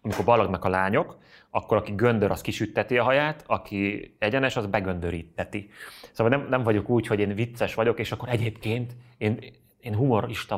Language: Hungarian